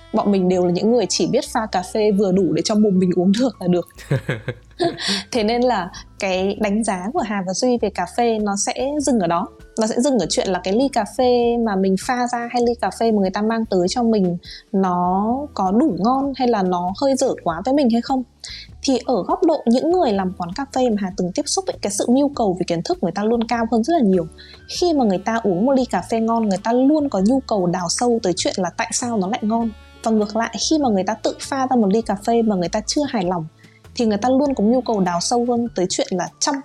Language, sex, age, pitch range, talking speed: Vietnamese, female, 20-39, 185-245 Hz, 275 wpm